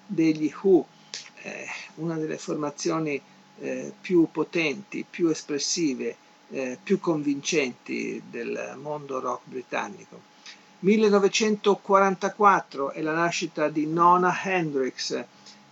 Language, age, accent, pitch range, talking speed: Italian, 50-69, native, 140-175 Hz, 85 wpm